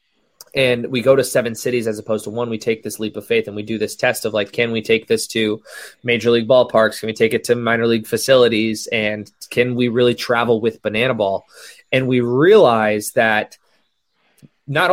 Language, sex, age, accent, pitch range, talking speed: English, male, 20-39, American, 110-130 Hz, 210 wpm